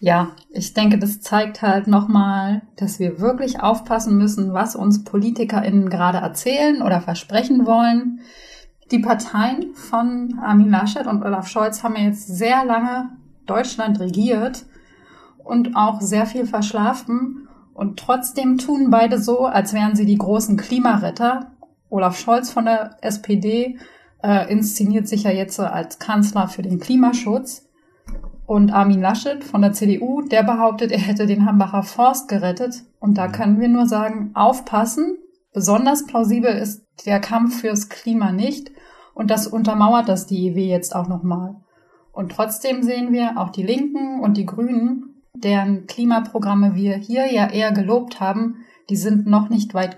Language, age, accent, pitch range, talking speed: German, 30-49, German, 200-245 Hz, 150 wpm